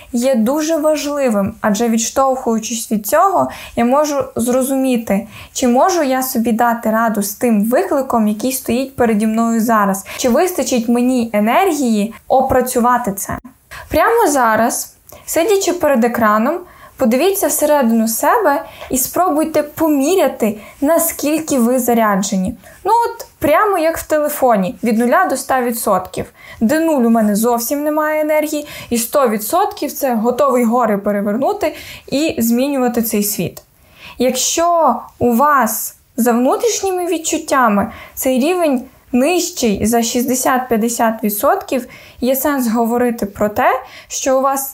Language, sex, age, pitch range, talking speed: Ukrainian, female, 20-39, 225-290 Hz, 120 wpm